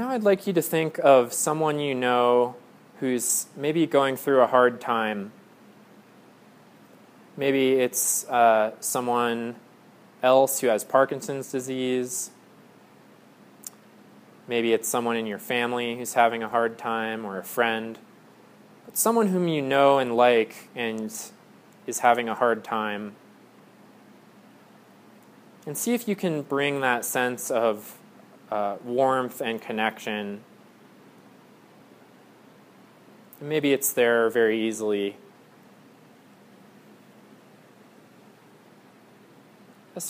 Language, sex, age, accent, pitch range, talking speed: English, male, 20-39, American, 110-135 Hz, 110 wpm